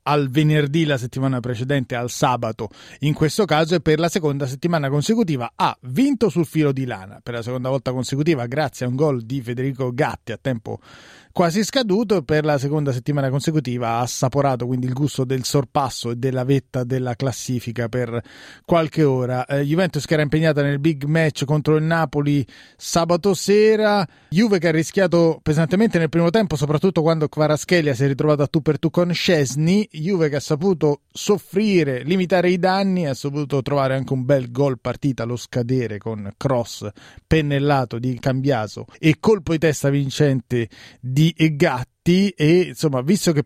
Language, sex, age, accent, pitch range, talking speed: Italian, male, 30-49, native, 125-160 Hz, 175 wpm